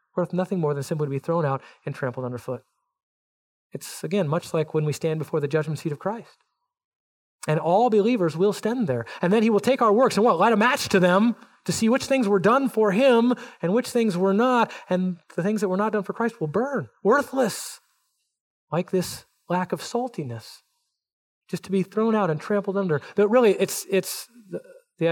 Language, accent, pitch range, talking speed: English, American, 155-205 Hz, 210 wpm